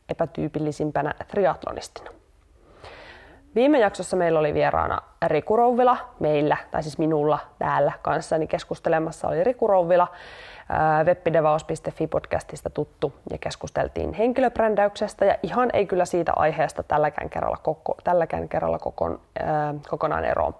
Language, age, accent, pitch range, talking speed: Finnish, 20-39, native, 160-240 Hz, 95 wpm